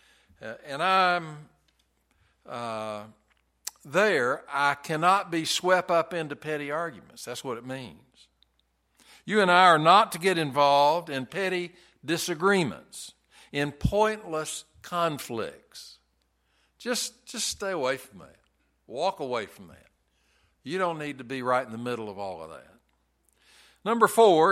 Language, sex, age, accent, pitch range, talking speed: English, male, 60-79, American, 115-195 Hz, 135 wpm